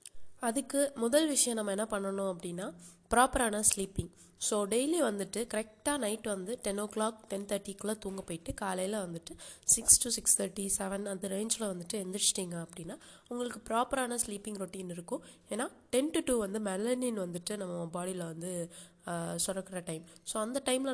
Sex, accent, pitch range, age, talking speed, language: female, native, 190-245 Hz, 20-39, 155 wpm, Tamil